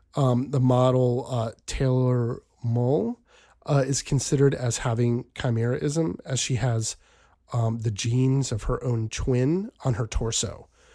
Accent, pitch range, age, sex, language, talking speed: American, 110-130 Hz, 40-59, male, English, 130 wpm